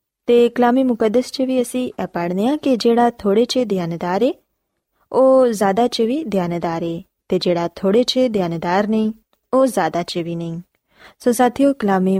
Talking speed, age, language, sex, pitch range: 150 wpm, 20-39, Punjabi, female, 185-245 Hz